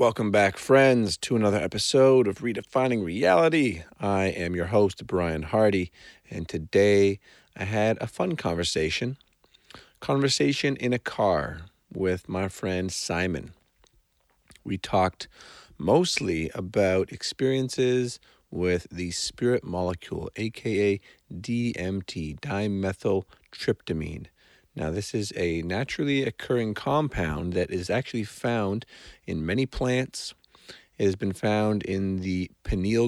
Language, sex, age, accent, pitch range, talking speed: English, male, 40-59, American, 90-115 Hz, 115 wpm